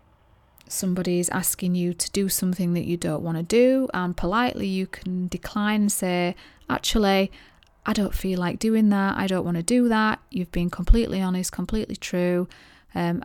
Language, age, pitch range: English, 30-49, 170-190 Hz